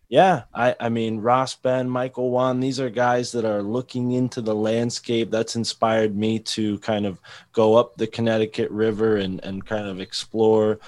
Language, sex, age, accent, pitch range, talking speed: English, male, 20-39, American, 105-120 Hz, 180 wpm